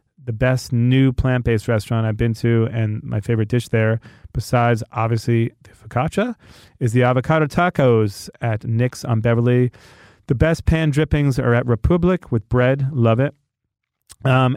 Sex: male